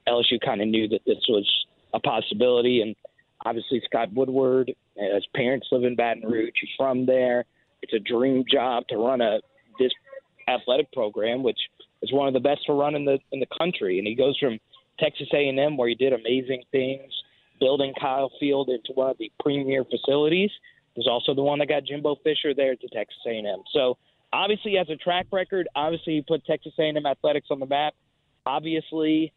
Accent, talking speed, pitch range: American, 190 wpm, 130-160 Hz